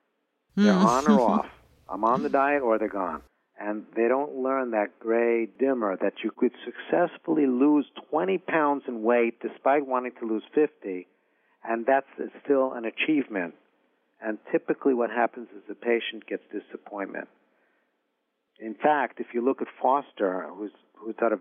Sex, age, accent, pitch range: male, 50-69, American, 110-140 Hz